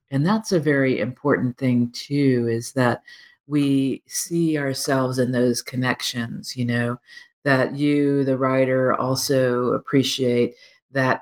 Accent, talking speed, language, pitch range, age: American, 130 wpm, English, 125-170 Hz, 50-69